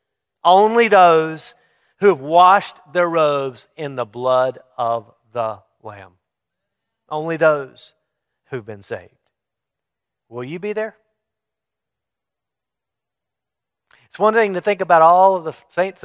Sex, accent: male, American